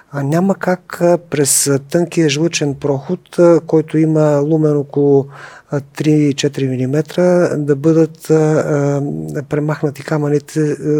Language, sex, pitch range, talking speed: Bulgarian, male, 140-170 Hz, 95 wpm